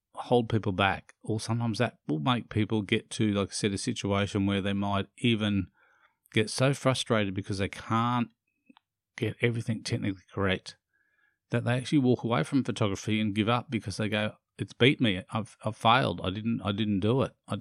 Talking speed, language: 190 wpm, English